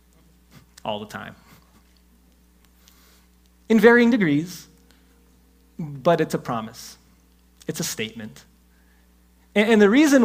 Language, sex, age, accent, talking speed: English, male, 30-49, American, 95 wpm